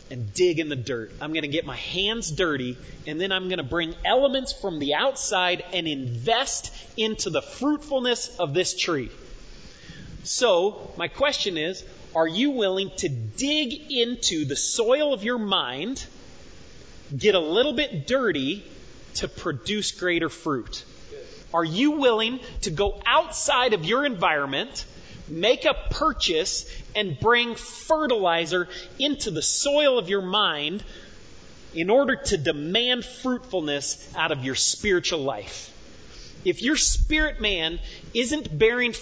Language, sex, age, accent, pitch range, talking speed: English, male, 30-49, American, 165-270 Hz, 140 wpm